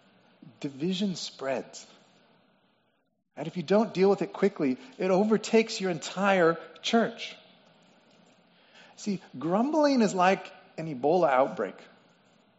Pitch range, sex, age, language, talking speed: 180-235 Hz, male, 30-49, English, 105 wpm